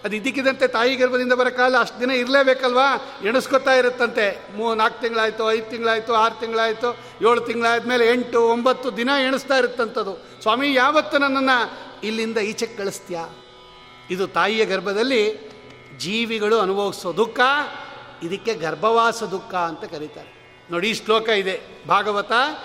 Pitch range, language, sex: 215-255 Hz, Kannada, male